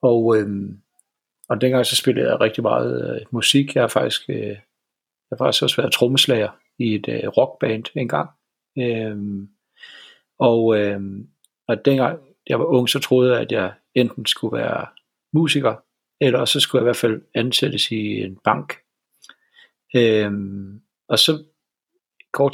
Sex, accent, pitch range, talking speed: male, native, 110-135 Hz, 155 wpm